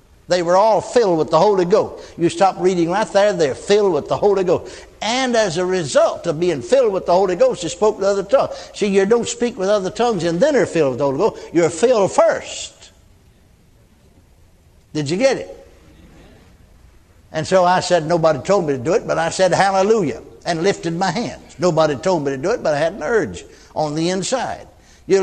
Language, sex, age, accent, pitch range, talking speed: English, male, 60-79, American, 165-230 Hz, 215 wpm